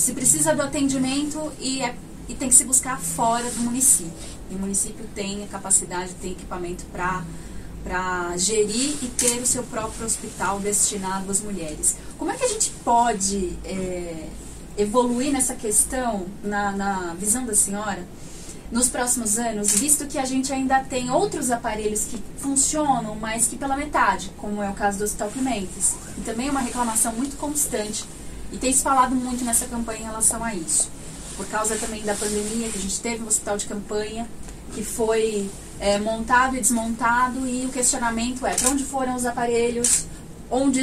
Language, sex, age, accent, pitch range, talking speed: Portuguese, female, 20-39, Brazilian, 205-255 Hz, 175 wpm